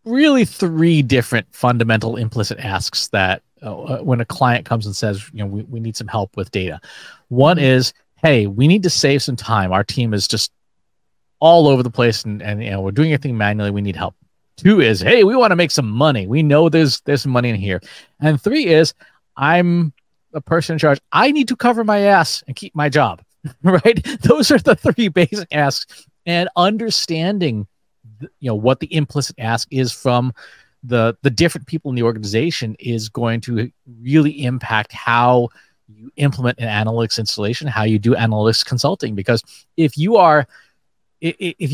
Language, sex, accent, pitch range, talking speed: English, male, American, 115-160 Hz, 190 wpm